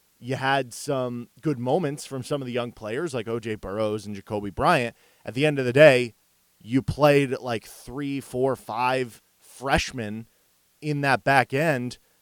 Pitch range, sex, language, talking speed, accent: 115-145 Hz, male, English, 165 wpm, American